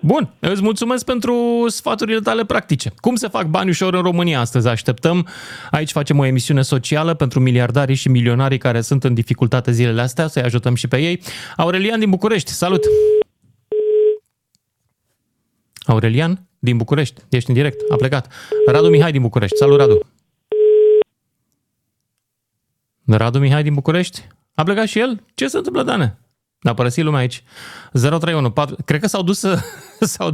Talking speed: 155 wpm